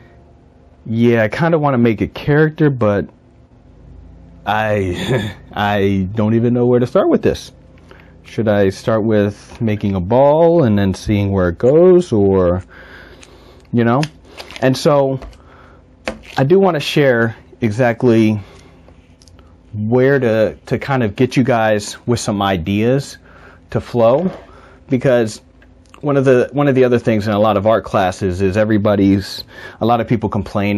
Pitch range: 100-130 Hz